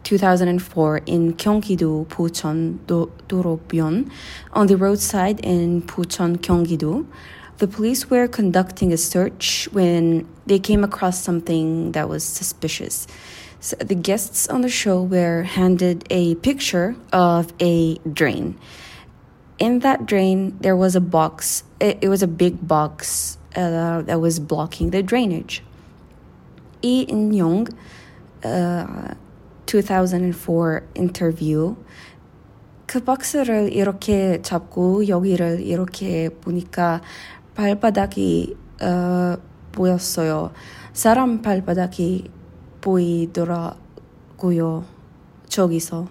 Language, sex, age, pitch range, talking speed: English, female, 20-39, 165-195 Hz, 90 wpm